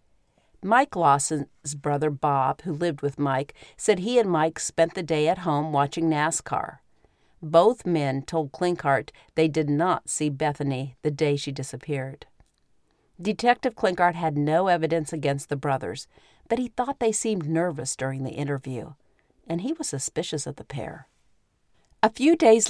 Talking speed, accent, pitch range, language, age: 155 wpm, American, 150-185 Hz, English, 50-69